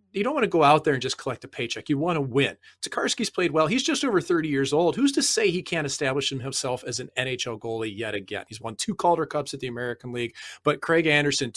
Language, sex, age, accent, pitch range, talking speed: English, male, 30-49, American, 120-155 Hz, 260 wpm